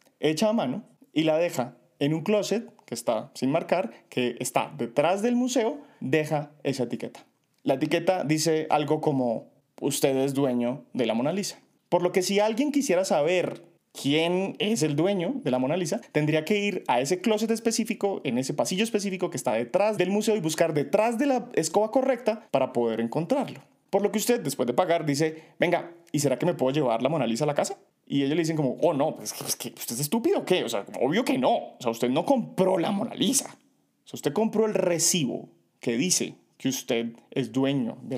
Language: Spanish